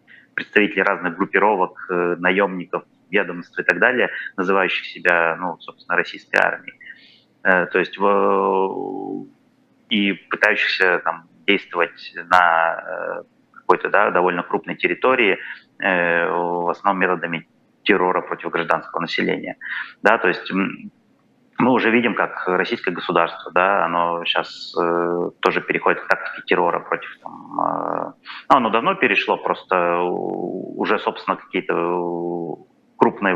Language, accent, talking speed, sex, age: Russian, native, 115 wpm, male, 30-49